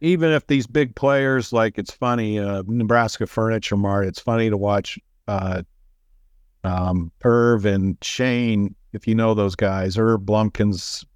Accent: American